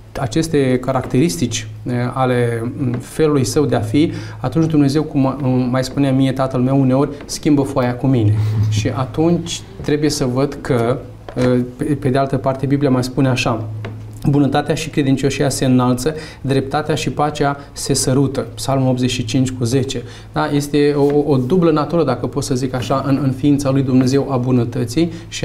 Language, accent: Romanian, native